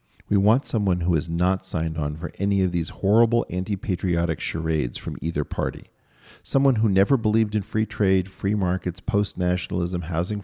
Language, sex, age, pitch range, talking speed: English, male, 40-59, 85-100 Hz, 165 wpm